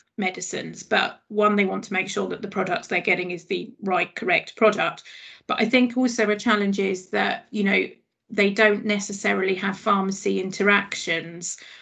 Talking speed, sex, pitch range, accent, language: 175 wpm, female, 190-215 Hz, British, English